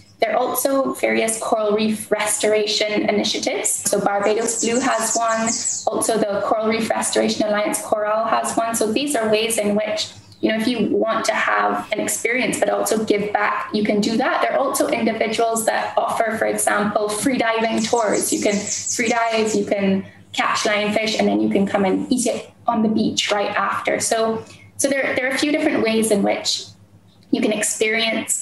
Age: 10-29